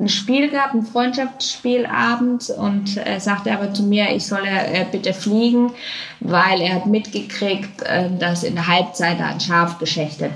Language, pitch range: German, 175-220 Hz